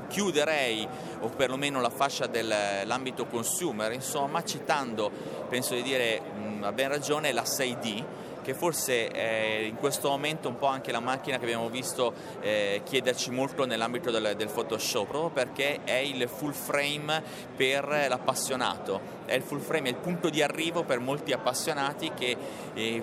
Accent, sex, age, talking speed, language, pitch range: native, male, 30-49, 160 wpm, Italian, 115-135 Hz